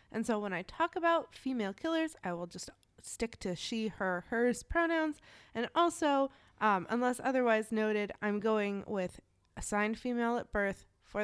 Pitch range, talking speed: 200-270 Hz, 165 wpm